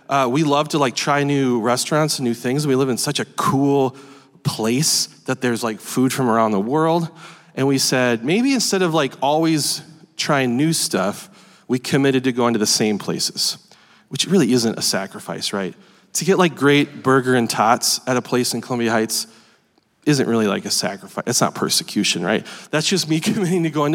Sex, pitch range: male, 130-180 Hz